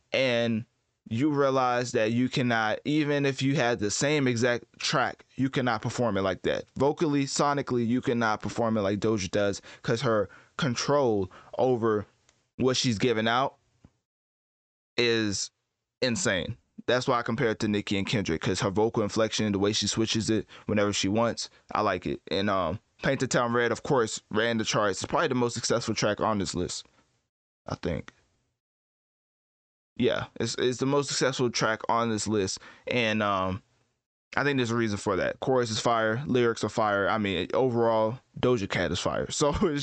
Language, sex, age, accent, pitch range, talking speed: English, male, 20-39, American, 110-130 Hz, 180 wpm